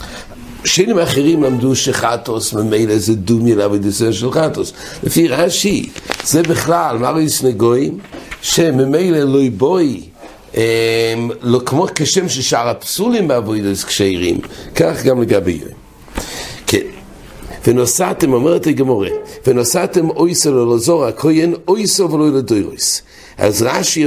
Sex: male